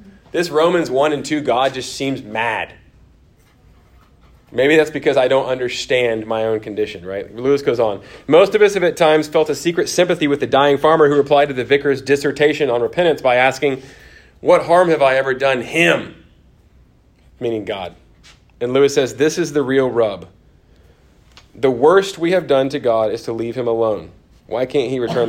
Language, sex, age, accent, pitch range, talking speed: English, male, 30-49, American, 105-150 Hz, 185 wpm